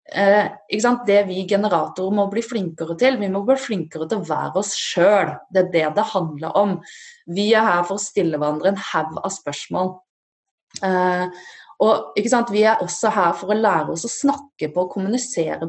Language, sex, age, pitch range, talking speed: English, female, 20-39, 170-230 Hz, 185 wpm